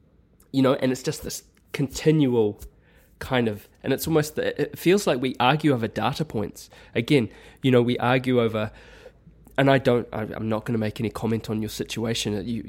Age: 20-39